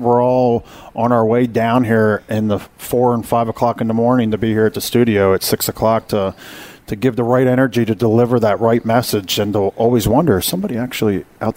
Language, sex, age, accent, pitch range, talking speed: English, male, 40-59, American, 100-120 Hz, 230 wpm